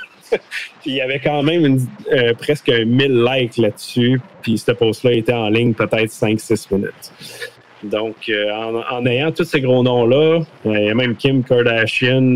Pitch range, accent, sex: 110-130 Hz, Canadian, male